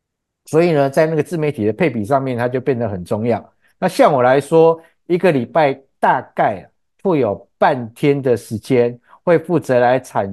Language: Chinese